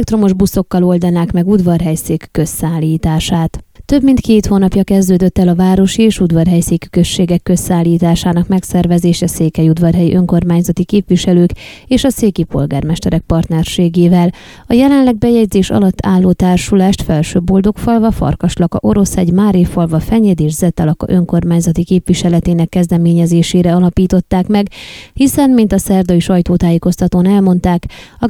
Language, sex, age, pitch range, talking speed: Hungarian, female, 20-39, 175-200 Hz, 115 wpm